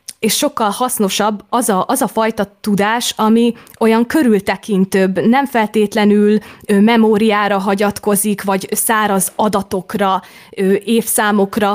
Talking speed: 95 wpm